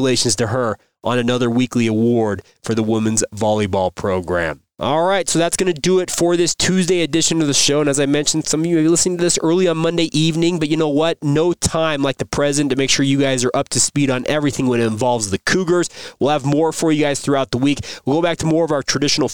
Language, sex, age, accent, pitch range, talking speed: English, male, 20-39, American, 125-160 Hz, 260 wpm